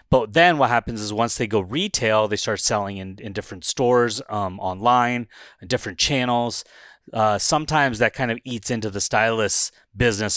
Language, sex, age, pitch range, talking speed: English, male, 30-49, 100-120 Hz, 180 wpm